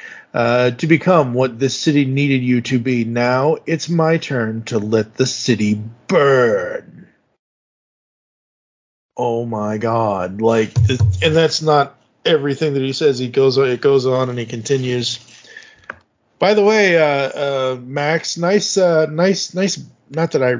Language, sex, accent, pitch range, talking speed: English, male, American, 125-160 Hz, 150 wpm